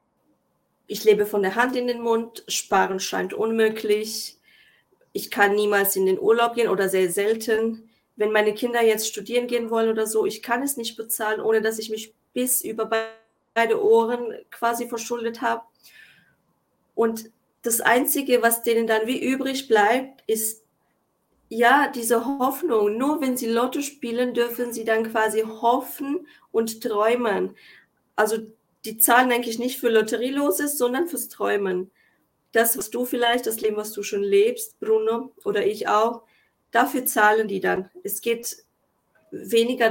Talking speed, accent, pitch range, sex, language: 155 wpm, German, 220-245 Hz, female, German